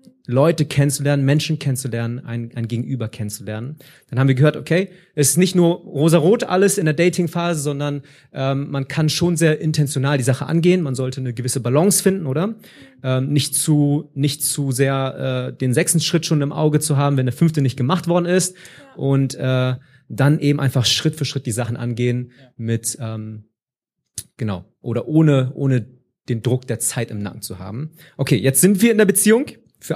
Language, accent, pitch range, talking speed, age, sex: German, German, 125-150 Hz, 190 wpm, 30-49, male